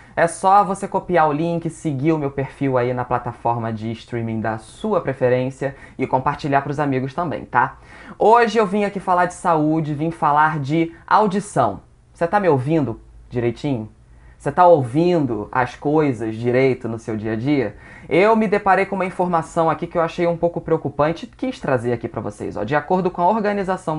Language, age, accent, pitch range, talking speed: Portuguese, 20-39, Brazilian, 125-170 Hz, 195 wpm